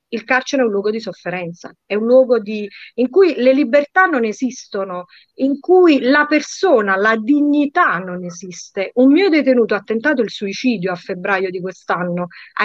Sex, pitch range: female, 195-255 Hz